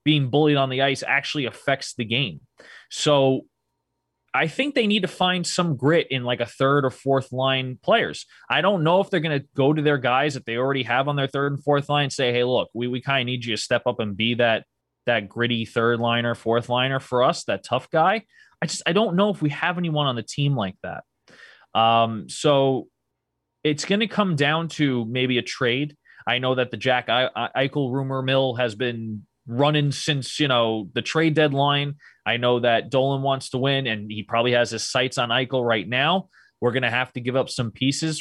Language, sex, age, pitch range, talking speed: English, male, 20-39, 120-150 Hz, 225 wpm